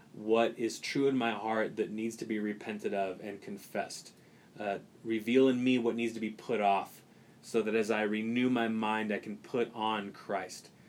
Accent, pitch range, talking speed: American, 110-130 Hz, 200 wpm